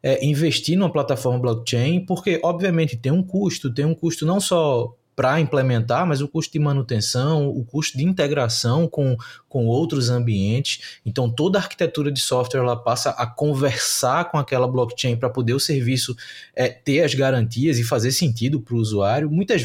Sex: male